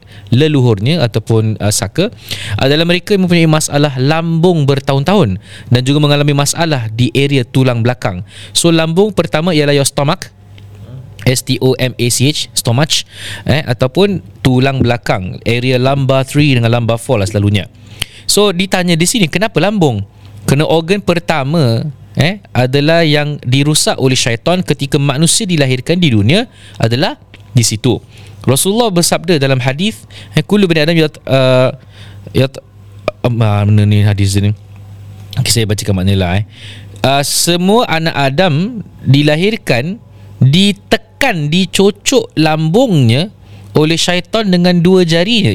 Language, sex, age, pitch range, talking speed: Malay, male, 20-39, 110-170 Hz, 125 wpm